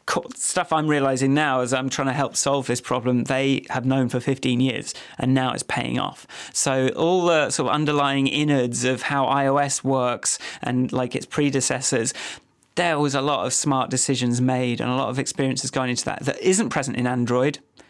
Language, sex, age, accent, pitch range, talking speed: English, male, 30-49, British, 125-145 Hz, 200 wpm